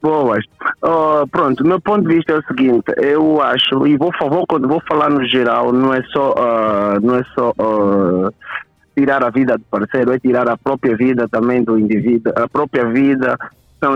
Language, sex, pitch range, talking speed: Portuguese, male, 125-155 Hz, 190 wpm